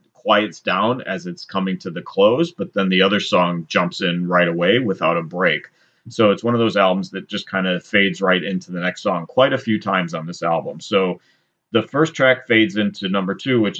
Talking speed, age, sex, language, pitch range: 225 wpm, 30-49, male, English, 95-125 Hz